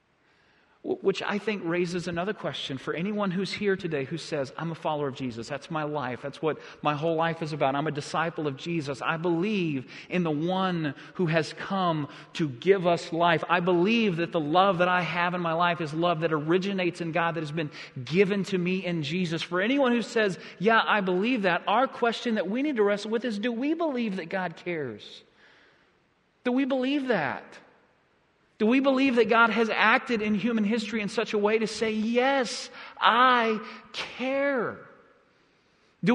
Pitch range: 175-235 Hz